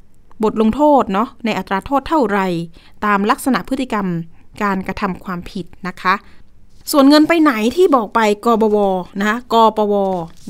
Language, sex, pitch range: Thai, female, 195-260 Hz